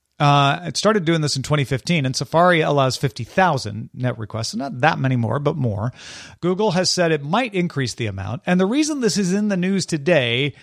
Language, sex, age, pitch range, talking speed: English, male, 40-59, 125-180 Hz, 210 wpm